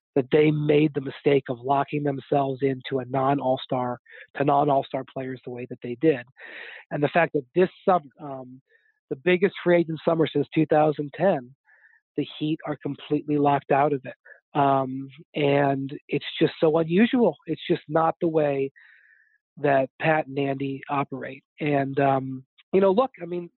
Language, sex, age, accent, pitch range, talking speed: English, male, 40-59, American, 140-165 Hz, 160 wpm